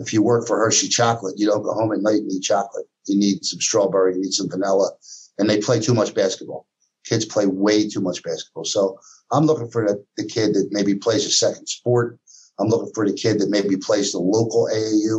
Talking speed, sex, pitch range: 235 wpm, male, 95-120 Hz